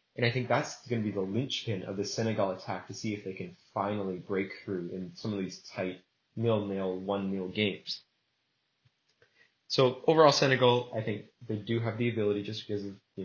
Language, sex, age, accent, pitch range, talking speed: English, male, 20-39, American, 95-120 Hz, 195 wpm